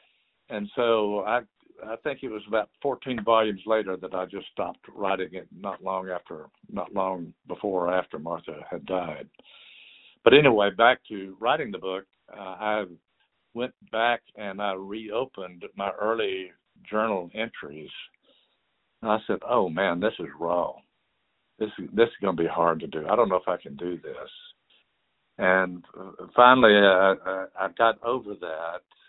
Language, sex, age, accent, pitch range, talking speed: English, male, 60-79, American, 90-110 Hz, 160 wpm